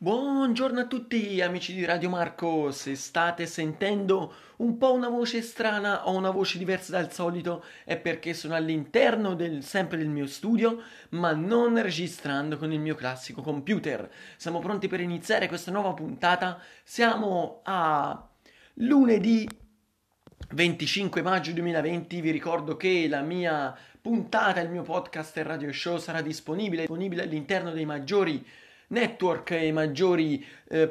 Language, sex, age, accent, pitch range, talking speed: Italian, male, 30-49, native, 155-190 Hz, 140 wpm